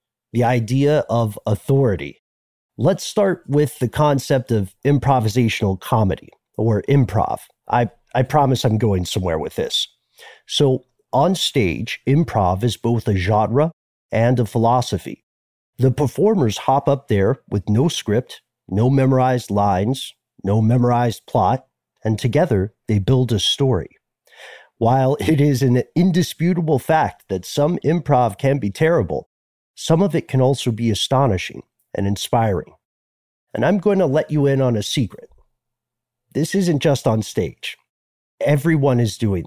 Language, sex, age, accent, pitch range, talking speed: English, male, 40-59, American, 105-140 Hz, 140 wpm